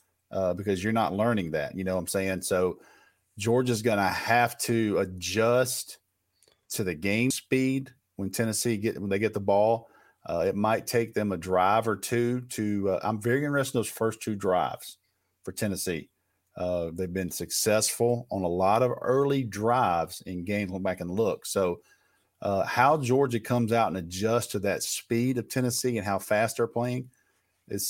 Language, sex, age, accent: English, male, 40-59, American